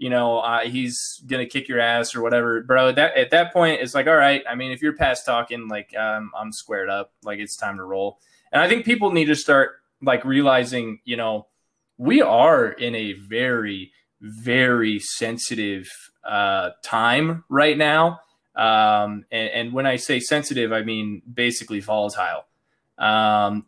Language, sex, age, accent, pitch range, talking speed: English, male, 20-39, American, 105-140 Hz, 175 wpm